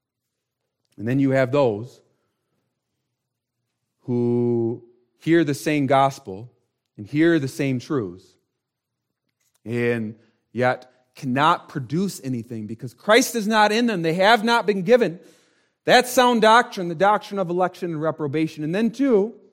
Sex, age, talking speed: male, 40-59, 130 wpm